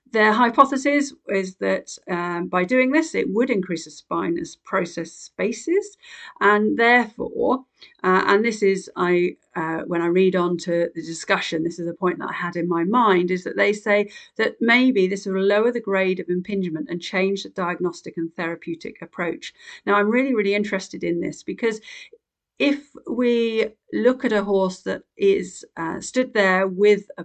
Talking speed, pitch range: 180 wpm, 175-220 Hz